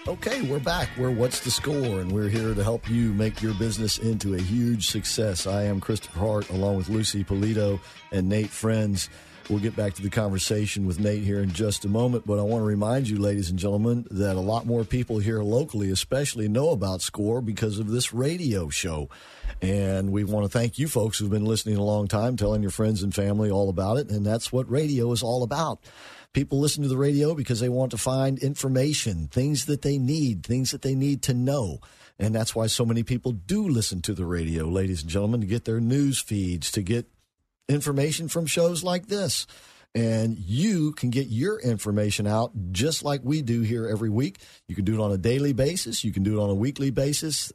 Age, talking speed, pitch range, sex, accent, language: 50-69, 220 wpm, 105-130 Hz, male, American, English